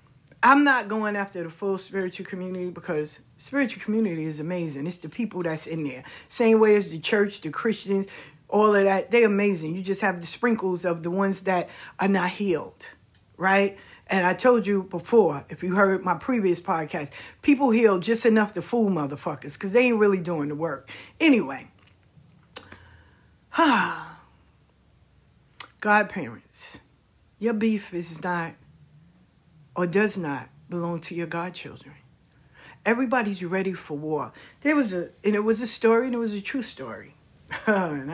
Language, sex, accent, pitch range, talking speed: English, female, American, 150-205 Hz, 160 wpm